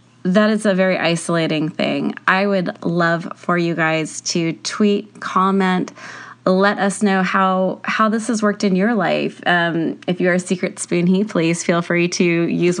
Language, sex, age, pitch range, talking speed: English, female, 20-39, 170-200 Hz, 180 wpm